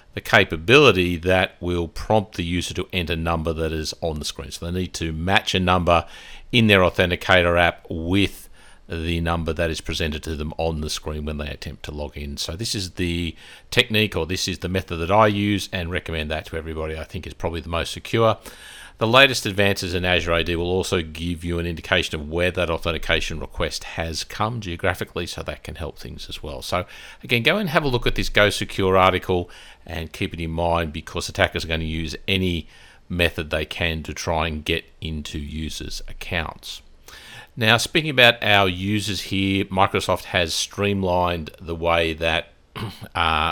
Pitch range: 80-100 Hz